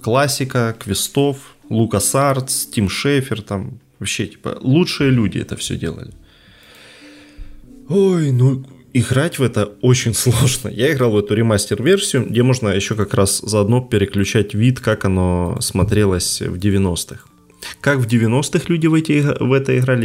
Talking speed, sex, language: 140 wpm, male, Ukrainian